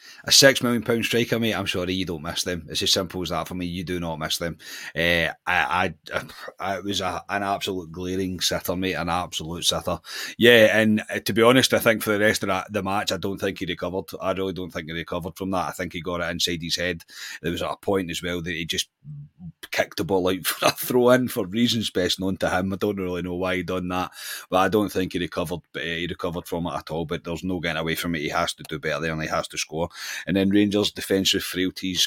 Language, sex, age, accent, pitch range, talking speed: English, male, 30-49, British, 85-105 Hz, 260 wpm